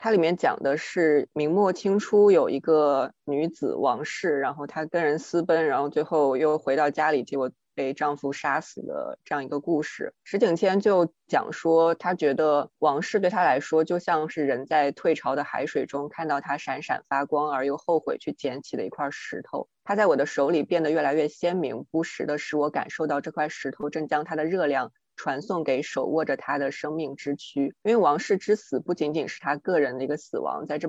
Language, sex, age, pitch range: Chinese, female, 20-39, 145-165 Hz